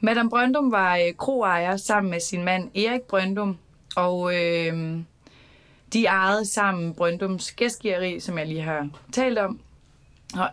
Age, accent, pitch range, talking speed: 20-39, native, 170-200 Hz, 135 wpm